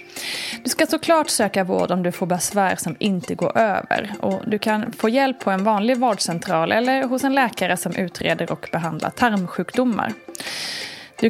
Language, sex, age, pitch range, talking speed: Swedish, female, 20-39, 185-245 Hz, 170 wpm